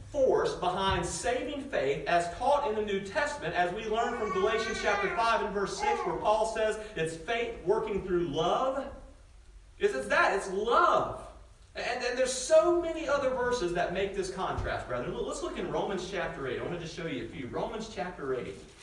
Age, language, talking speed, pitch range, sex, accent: 40-59, English, 200 wpm, 180-245 Hz, male, American